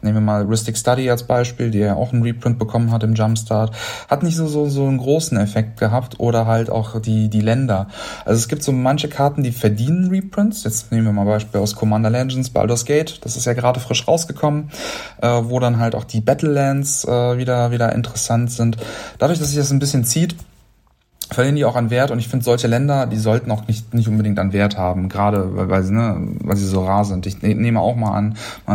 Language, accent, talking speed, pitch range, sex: German, German, 230 wpm, 105-135 Hz, male